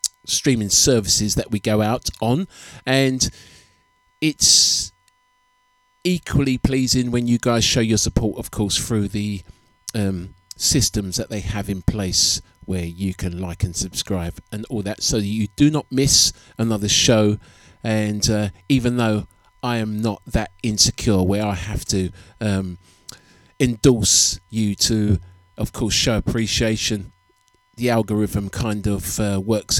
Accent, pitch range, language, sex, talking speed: British, 95-125 Hz, English, male, 145 wpm